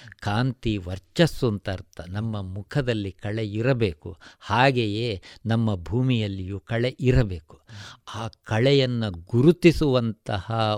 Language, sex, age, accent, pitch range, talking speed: Kannada, male, 50-69, native, 100-145 Hz, 85 wpm